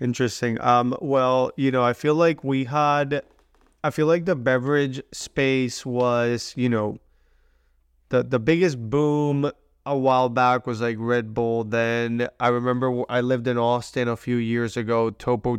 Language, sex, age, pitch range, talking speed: English, male, 20-39, 115-130 Hz, 160 wpm